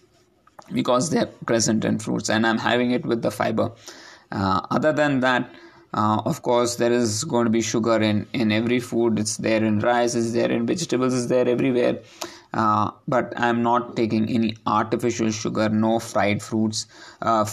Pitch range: 110-125 Hz